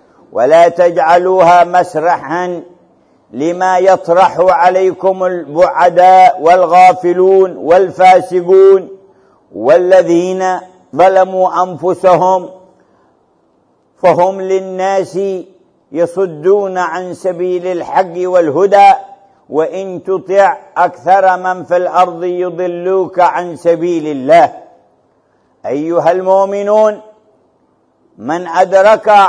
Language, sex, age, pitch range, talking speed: English, male, 50-69, 175-200 Hz, 70 wpm